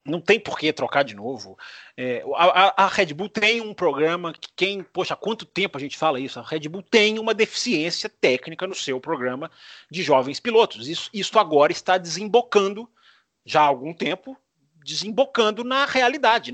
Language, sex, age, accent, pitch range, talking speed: Portuguese, male, 30-49, Brazilian, 165-230 Hz, 180 wpm